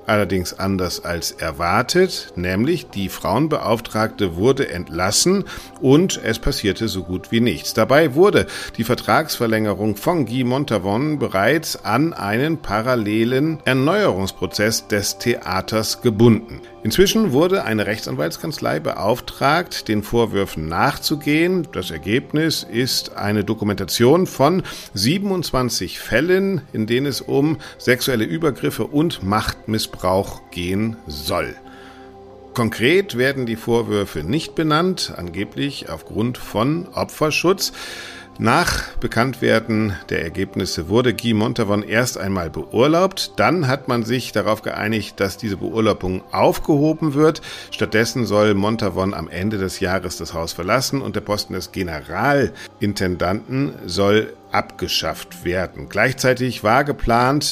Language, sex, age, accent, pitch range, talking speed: German, male, 50-69, German, 100-135 Hz, 115 wpm